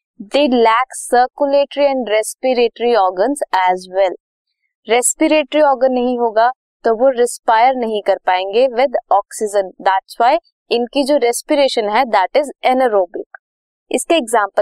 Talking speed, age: 80 wpm, 20-39